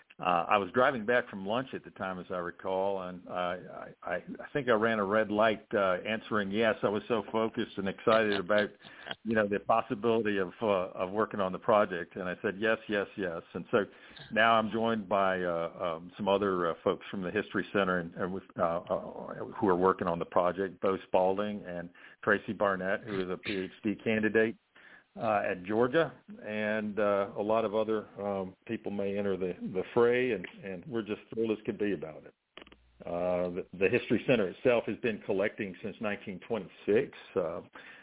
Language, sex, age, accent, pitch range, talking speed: English, male, 50-69, American, 90-110 Hz, 195 wpm